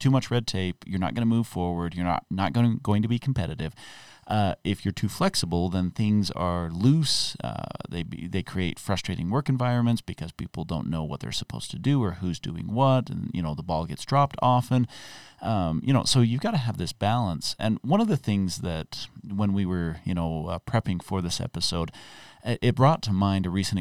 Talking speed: 220 wpm